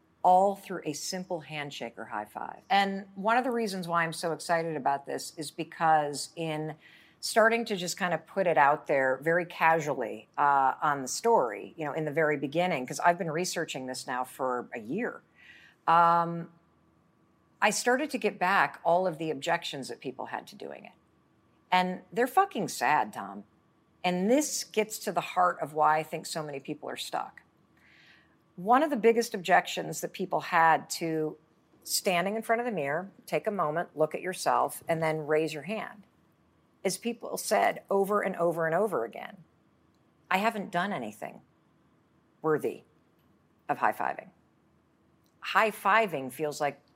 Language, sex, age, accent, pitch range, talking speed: English, female, 50-69, American, 155-205 Hz, 170 wpm